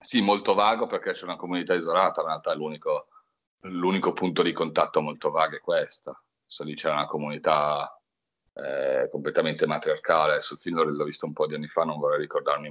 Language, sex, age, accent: Italian, male, 40-59, native